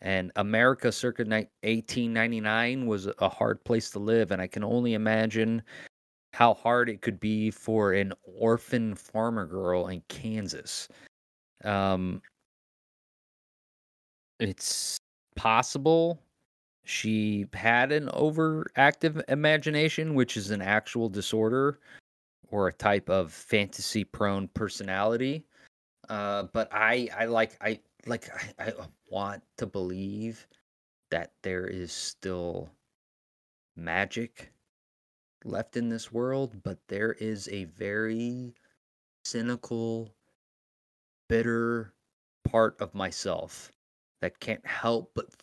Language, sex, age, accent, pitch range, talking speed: English, male, 30-49, American, 100-120 Hz, 110 wpm